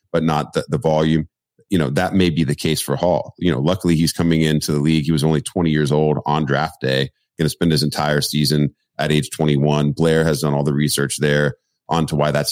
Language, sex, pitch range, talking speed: English, male, 75-85 Hz, 245 wpm